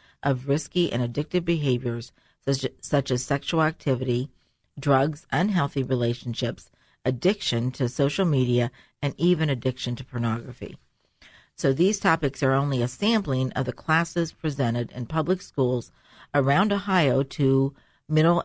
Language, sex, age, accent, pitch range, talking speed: English, female, 50-69, American, 125-165 Hz, 130 wpm